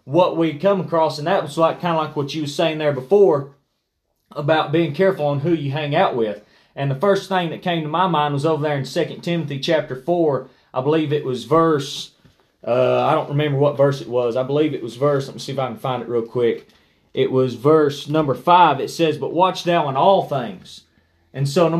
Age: 30-49